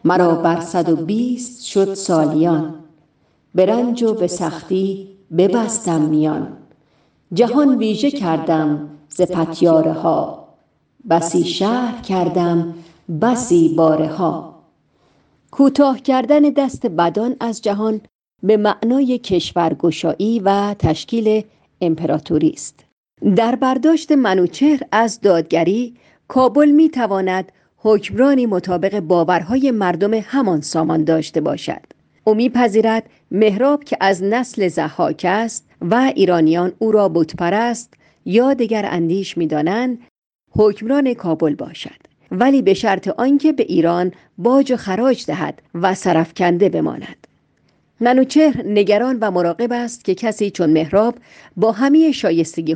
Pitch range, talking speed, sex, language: 170-235 Hz, 110 wpm, female, Persian